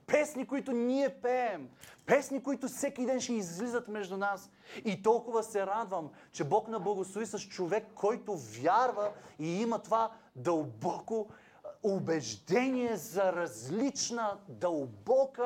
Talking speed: 125 wpm